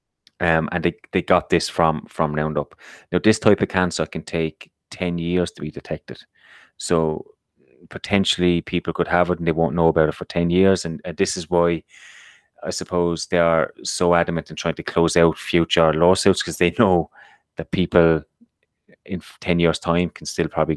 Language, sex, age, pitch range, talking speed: English, male, 30-49, 80-90 Hz, 190 wpm